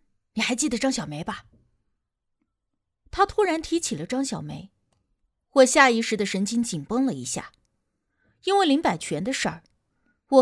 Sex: female